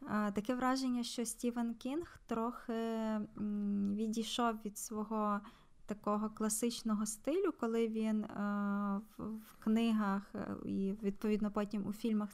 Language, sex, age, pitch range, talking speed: Ukrainian, female, 20-39, 205-230 Hz, 100 wpm